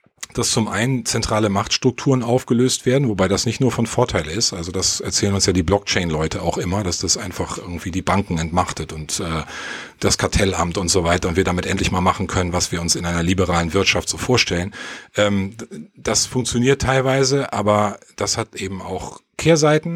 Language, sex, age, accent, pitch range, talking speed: German, male, 40-59, German, 95-130 Hz, 190 wpm